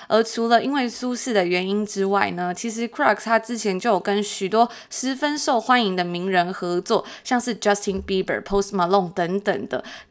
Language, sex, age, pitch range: Chinese, female, 20-39, 195-240 Hz